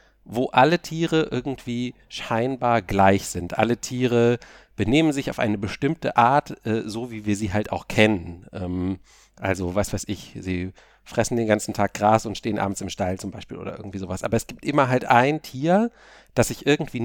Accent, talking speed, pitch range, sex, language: German, 190 wpm, 105-135 Hz, male, German